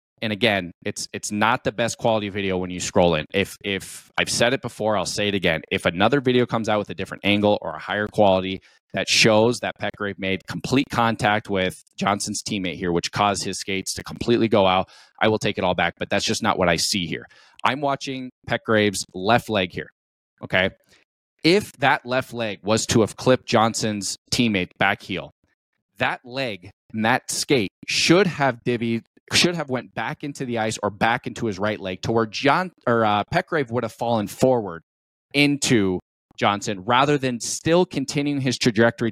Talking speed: 190 wpm